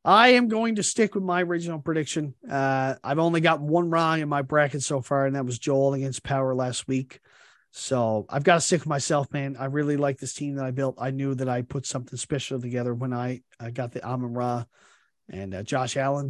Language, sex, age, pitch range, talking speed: English, male, 40-59, 130-170 Hz, 230 wpm